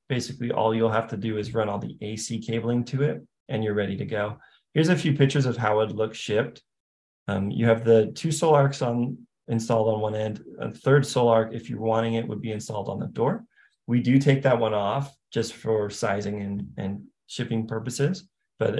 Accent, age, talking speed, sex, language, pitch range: American, 20-39, 215 wpm, male, English, 105-125 Hz